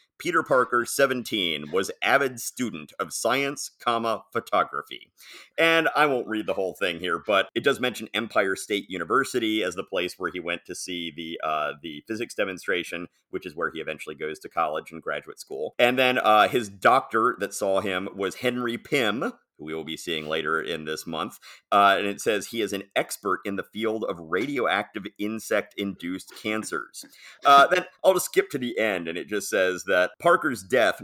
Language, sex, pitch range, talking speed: English, male, 95-125 Hz, 190 wpm